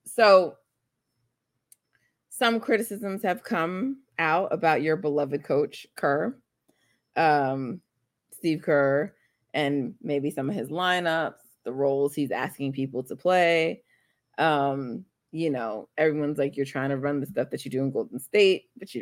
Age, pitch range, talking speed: 30-49, 140-165 Hz, 145 wpm